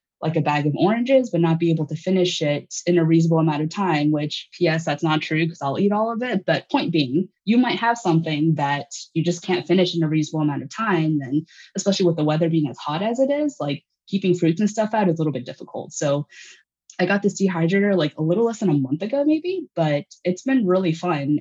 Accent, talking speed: American, 250 wpm